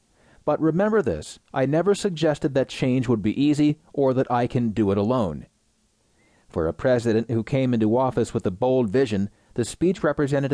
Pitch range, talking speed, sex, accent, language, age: 115-145 Hz, 180 wpm, male, American, English, 40-59